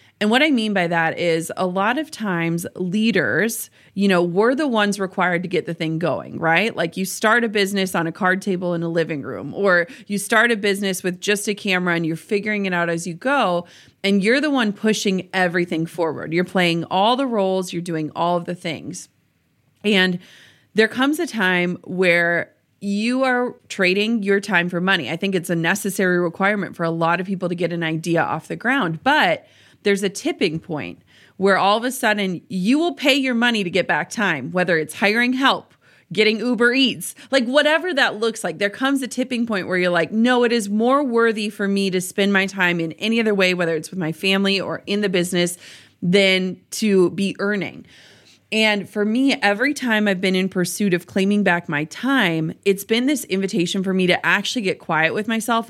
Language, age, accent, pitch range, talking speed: English, 30-49, American, 175-220 Hz, 210 wpm